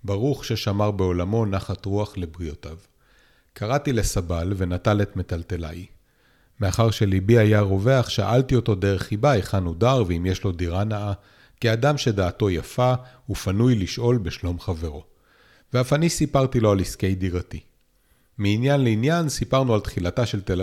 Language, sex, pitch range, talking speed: Hebrew, male, 90-115 Hz, 140 wpm